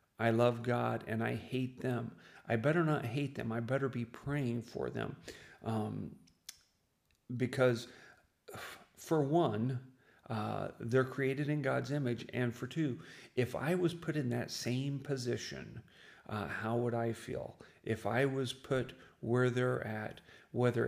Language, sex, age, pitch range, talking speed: English, male, 40-59, 115-140 Hz, 150 wpm